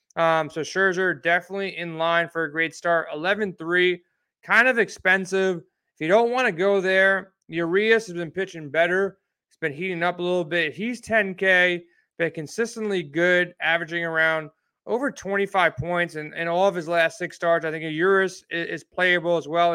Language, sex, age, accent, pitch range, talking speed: English, male, 30-49, American, 165-195 Hz, 180 wpm